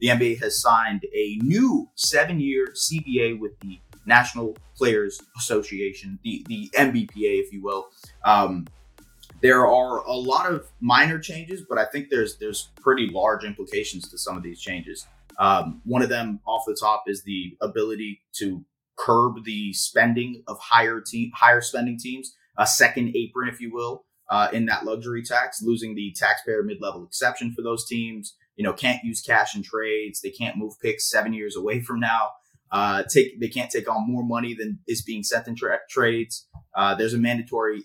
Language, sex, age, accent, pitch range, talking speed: English, male, 30-49, American, 105-125 Hz, 180 wpm